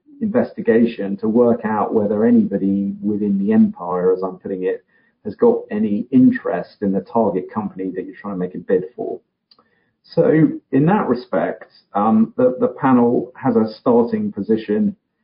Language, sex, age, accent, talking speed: English, male, 40-59, British, 160 wpm